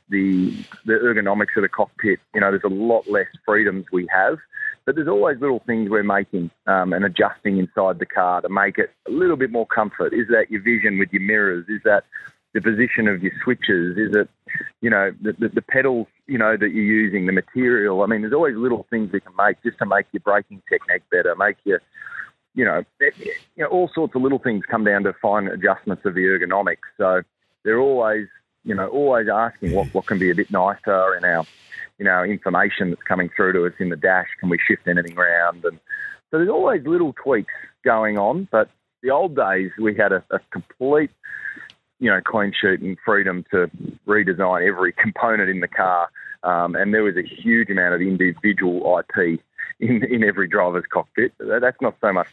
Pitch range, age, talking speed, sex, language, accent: 95-150 Hz, 30-49, 205 wpm, male, English, Australian